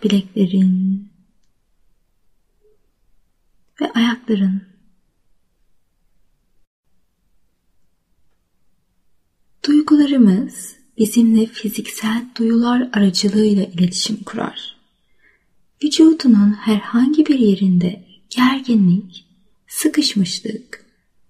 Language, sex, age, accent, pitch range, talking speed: Turkish, female, 30-49, native, 200-260 Hz, 45 wpm